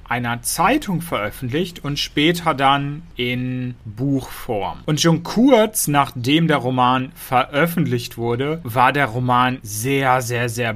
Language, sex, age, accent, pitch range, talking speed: German, male, 30-49, German, 120-155 Hz, 125 wpm